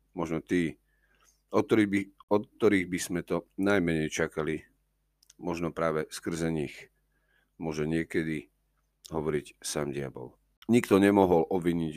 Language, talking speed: Slovak, 120 wpm